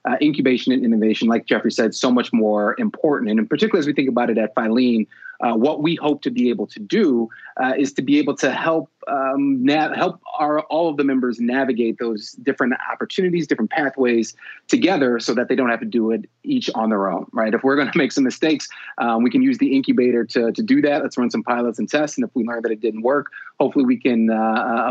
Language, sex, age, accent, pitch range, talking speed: English, male, 30-49, American, 115-140 Hz, 240 wpm